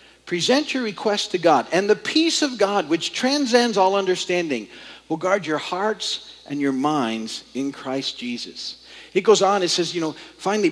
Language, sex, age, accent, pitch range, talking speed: English, male, 50-69, American, 160-220 Hz, 180 wpm